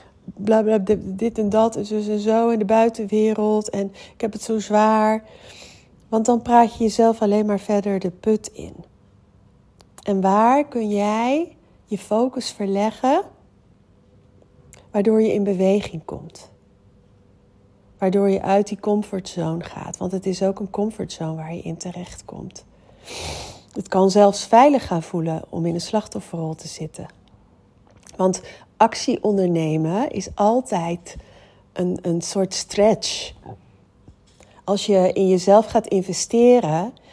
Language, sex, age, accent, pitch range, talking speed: Dutch, female, 40-59, Dutch, 175-215 Hz, 135 wpm